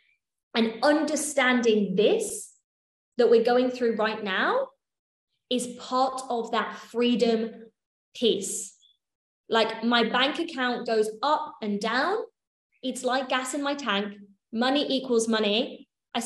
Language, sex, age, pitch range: English, female, 20-39, 225-260 Hz